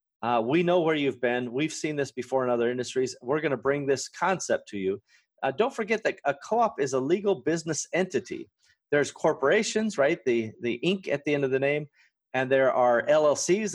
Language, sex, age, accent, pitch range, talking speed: English, male, 40-59, American, 125-160 Hz, 210 wpm